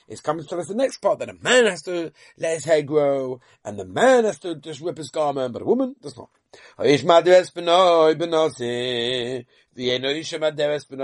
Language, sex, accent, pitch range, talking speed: English, male, British, 135-205 Hz, 160 wpm